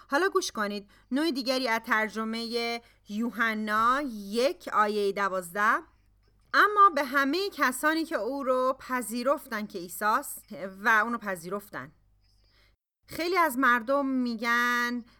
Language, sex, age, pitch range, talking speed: Persian, female, 30-49, 195-260 Hz, 115 wpm